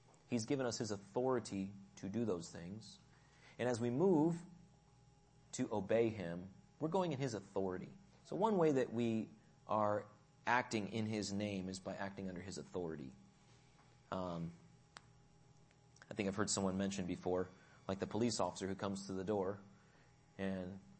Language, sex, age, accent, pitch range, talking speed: English, male, 30-49, American, 100-135 Hz, 155 wpm